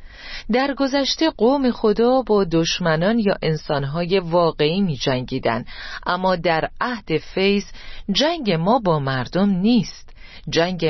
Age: 40-59